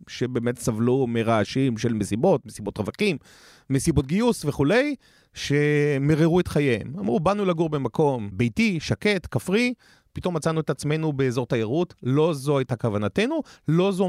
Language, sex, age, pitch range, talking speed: Hebrew, male, 30-49, 130-200 Hz, 135 wpm